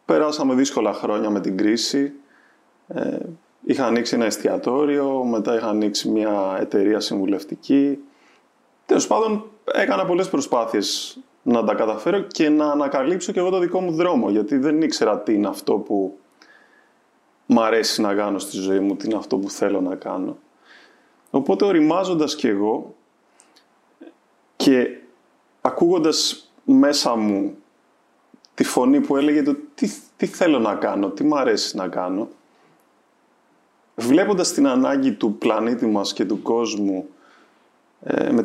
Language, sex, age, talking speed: Greek, male, 20-39, 135 wpm